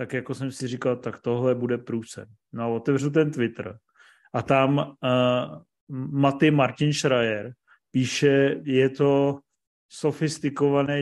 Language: Czech